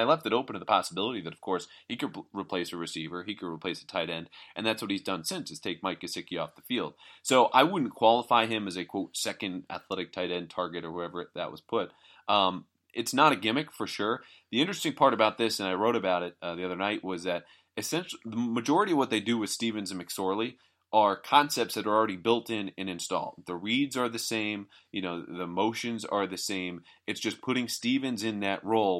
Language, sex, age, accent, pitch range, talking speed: English, male, 30-49, American, 90-115 Hz, 235 wpm